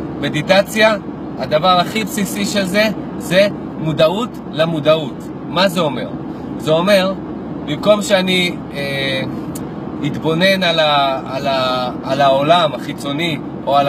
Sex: male